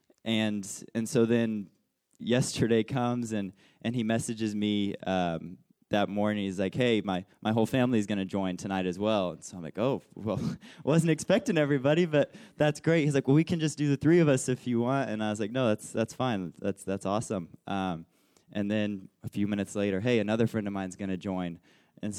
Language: English